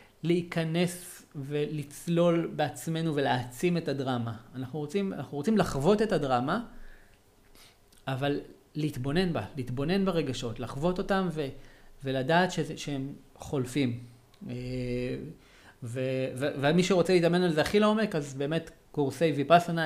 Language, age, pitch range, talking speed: Hebrew, 40-59, 135-175 Hz, 115 wpm